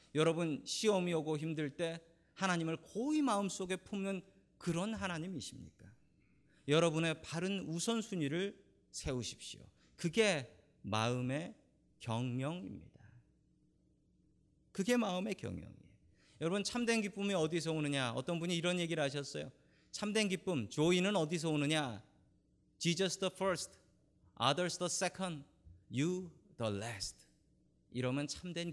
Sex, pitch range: male, 135-190 Hz